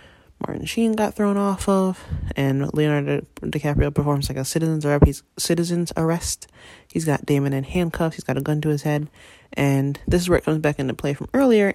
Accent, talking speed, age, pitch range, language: American, 190 wpm, 20-39, 140-165 Hz, English